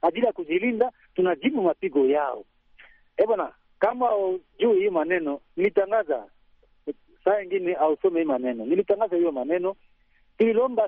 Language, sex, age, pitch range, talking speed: Swahili, male, 50-69, 185-275 Hz, 115 wpm